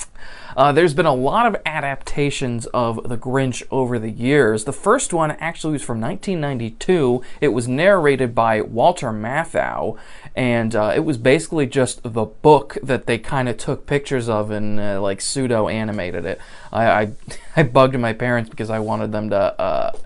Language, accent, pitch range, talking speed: English, American, 115-160 Hz, 170 wpm